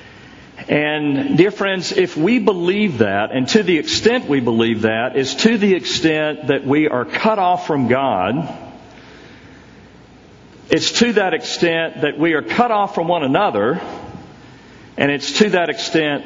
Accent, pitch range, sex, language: American, 145-205 Hz, male, English